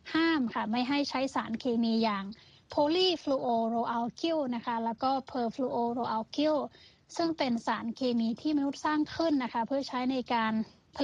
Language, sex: Thai, female